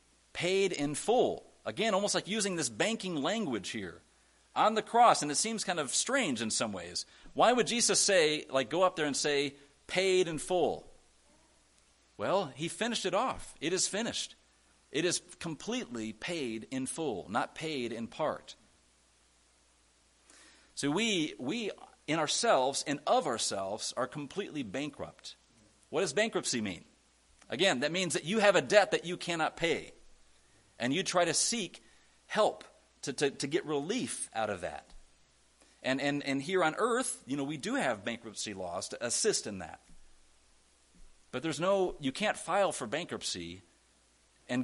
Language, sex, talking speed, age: English, male, 165 wpm, 40-59